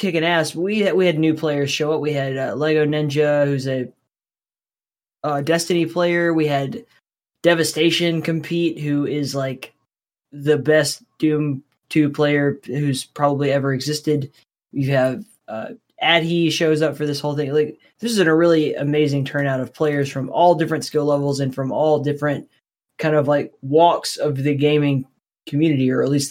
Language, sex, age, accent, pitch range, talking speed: English, male, 20-39, American, 135-160 Hz, 170 wpm